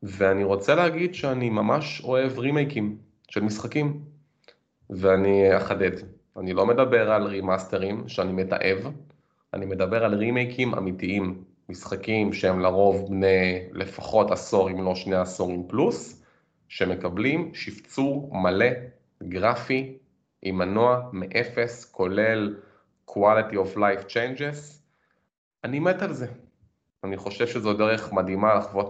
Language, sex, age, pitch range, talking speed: Hebrew, male, 30-49, 95-120 Hz, 95 wpm